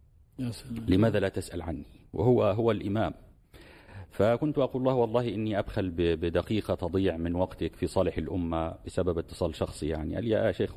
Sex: male